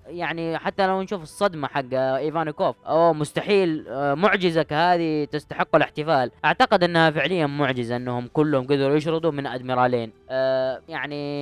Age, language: 20-39, Arabic